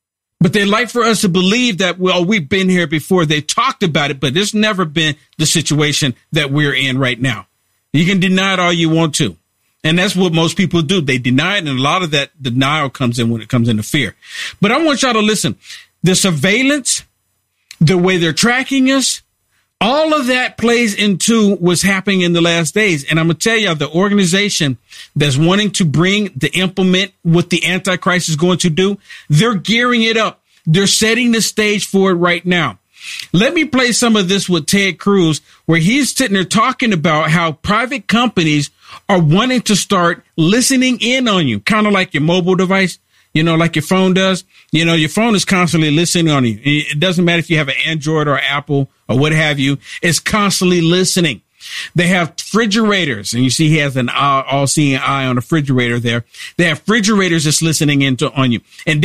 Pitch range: 155-205 Hz